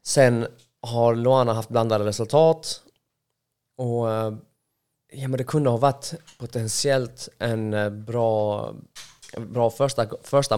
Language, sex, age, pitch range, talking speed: English, male, 20-39, 110-135 Hz, 115 wpm